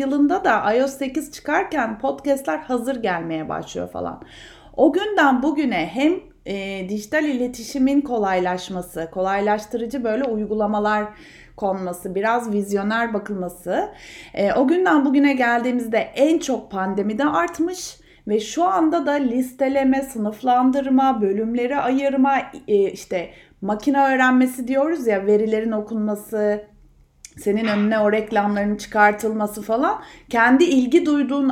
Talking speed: 115 wpm